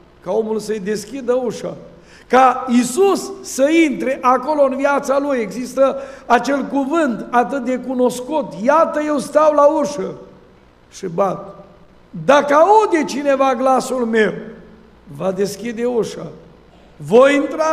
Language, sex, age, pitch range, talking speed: Romanian, male, 50-69, 225-280 Hz, 120 wpm